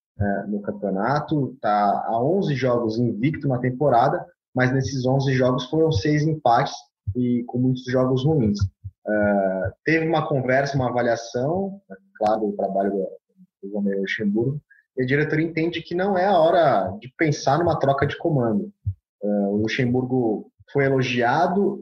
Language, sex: Portuguese, male